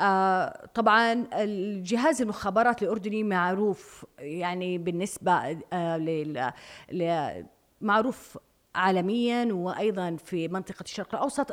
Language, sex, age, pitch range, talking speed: Arabic, female, 30-49, 175-225 Hz, 75 wpm